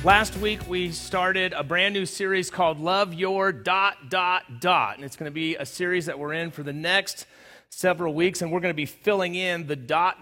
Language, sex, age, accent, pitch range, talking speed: English, male, 30-49, American, 135-170 Hz, 225 wpm